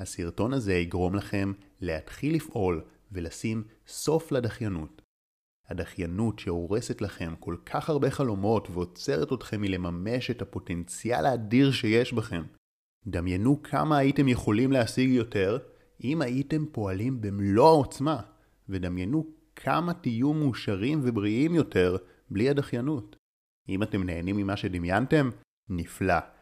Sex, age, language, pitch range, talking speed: male, 30-49, Hebrew, 95-135 Hz, 110 wpm